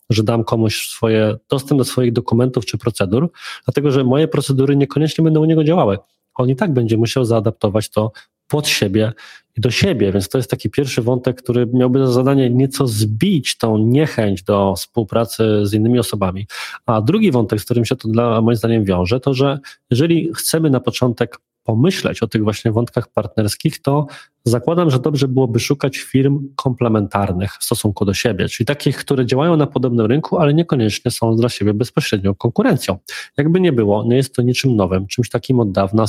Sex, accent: male, native